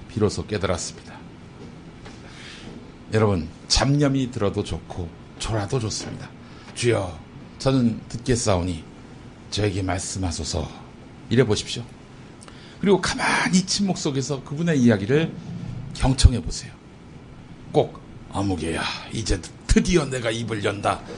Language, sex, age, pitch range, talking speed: English, male, 60-79, 100-150 Hz, 90 wpm